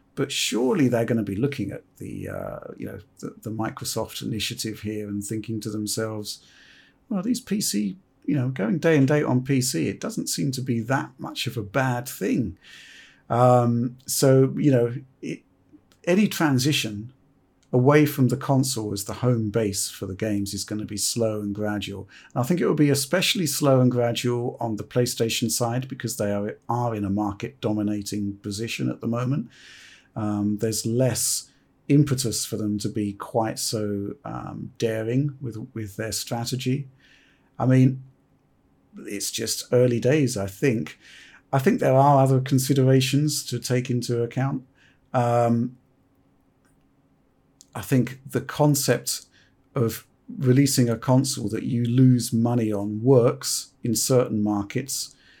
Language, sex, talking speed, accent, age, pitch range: English, male, 155 wpm, British, 50-69, 110-135 Hz